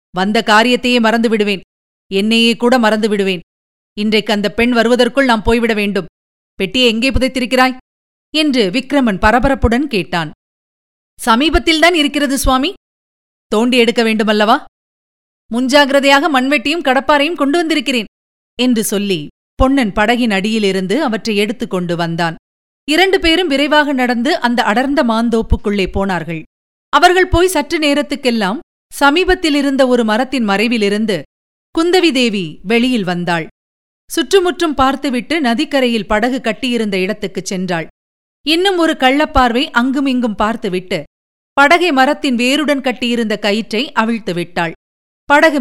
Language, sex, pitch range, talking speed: Tamil, female, 210-285 Hz, 105 wpm